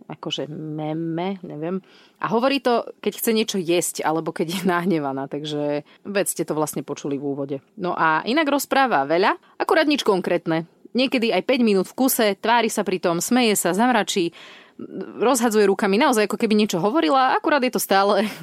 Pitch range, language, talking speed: 160-215 Hz, Slovak, 175 wpm